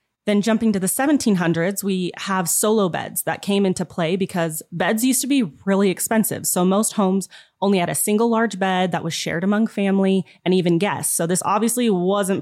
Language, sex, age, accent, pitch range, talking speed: English, female, 30-49, American, 170-205 Hz, 200 wpm